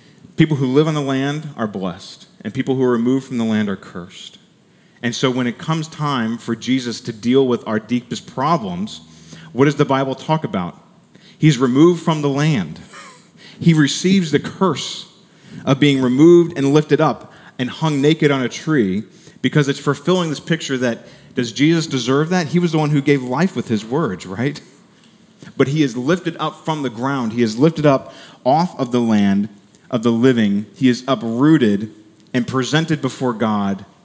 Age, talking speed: 30-49, 185 wpm